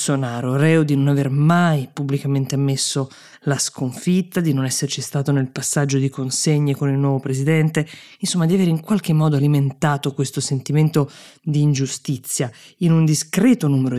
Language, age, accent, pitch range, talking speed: Italian, 20-39, native, 135-155 Hz, 155 wpm